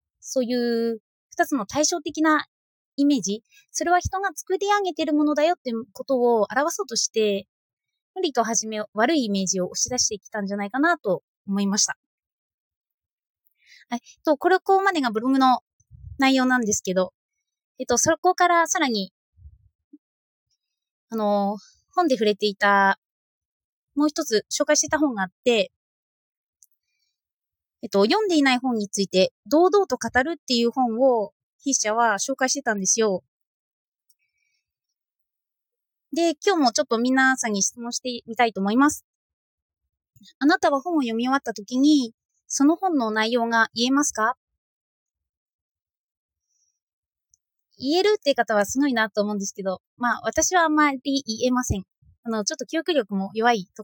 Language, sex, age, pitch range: Japanese, female, 20-39, 205-300 Hz